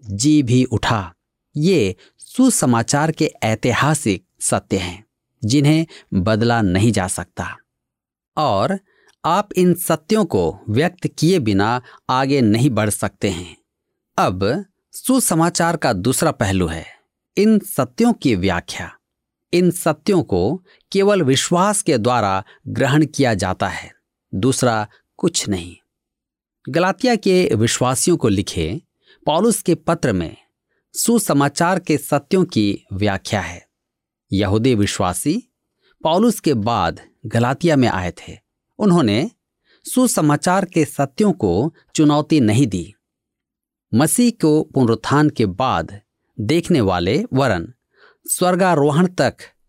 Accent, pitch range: native, 115-180 Hz